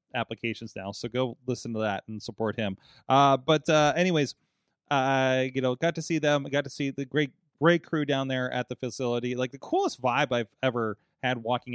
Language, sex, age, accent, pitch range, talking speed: English, male, 20-39, American, 115-140 Hz, 215 wpm